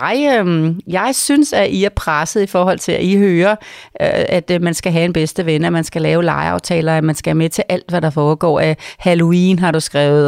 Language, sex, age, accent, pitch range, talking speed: Danish, female, 40-59, native, 160-205 Hz, 250 wpm